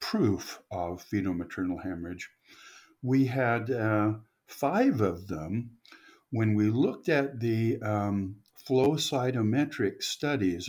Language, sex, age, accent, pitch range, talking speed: English, male, 60-79, American, 100-130 Hz, 110 wpm